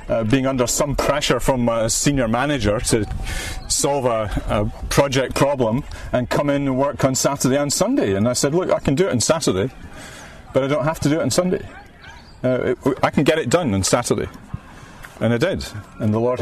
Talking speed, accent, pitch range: 210 wpm, British, 115-145 Hz